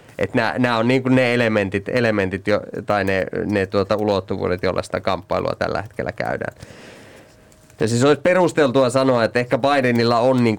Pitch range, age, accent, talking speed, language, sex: 95-110 Hz, 20-39, native, 155 wpm, Finnish, male